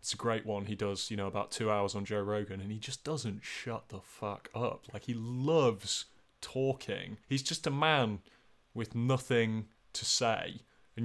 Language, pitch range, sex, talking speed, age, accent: English, 105-125 Hz, male, 190 wpm, 20-39, British